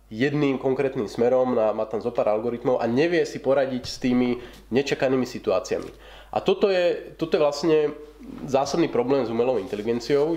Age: 30-49